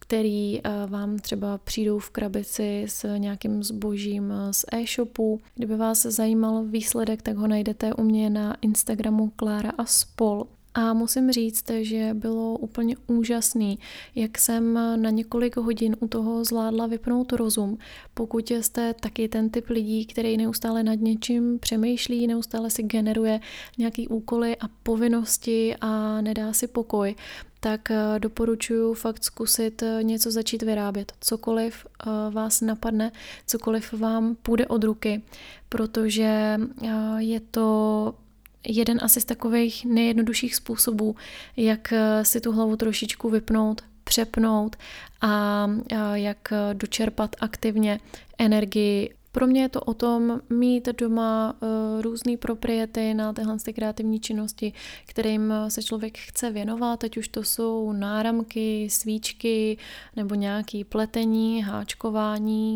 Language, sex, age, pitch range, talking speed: Czech, female, 20-39, 215-230 Hz, 125 wpm